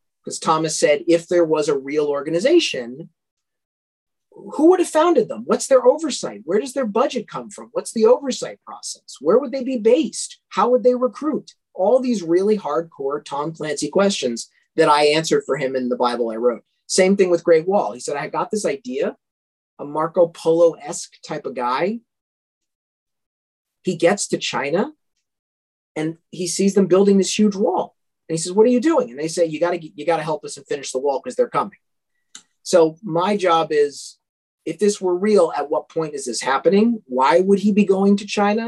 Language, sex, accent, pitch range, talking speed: English, male, American, 150-220 Hz, 195 wpm